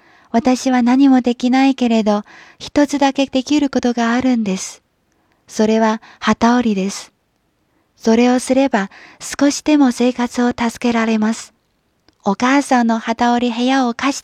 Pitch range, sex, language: 195-250 Hz, female, Chinese